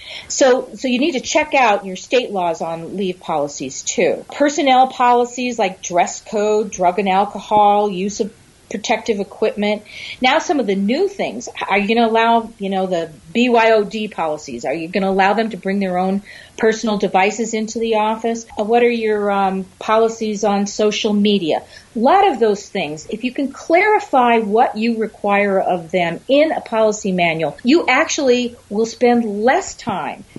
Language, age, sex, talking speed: English, 40-59, female, 175 wpm